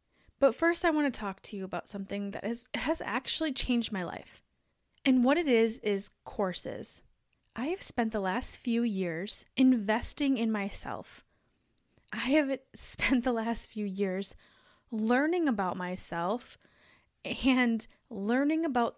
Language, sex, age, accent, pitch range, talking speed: English, female, 10-29, American, 205-275 Hz, 145 wpm